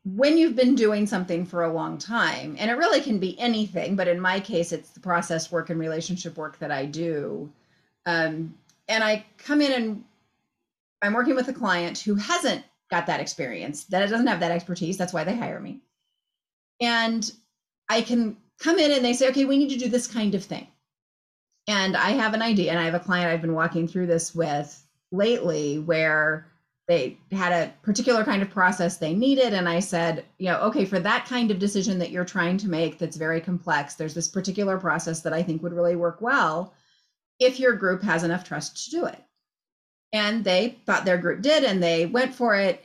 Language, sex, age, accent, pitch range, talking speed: English, female, 30-49, American, 165-220 Hz, 210 wpm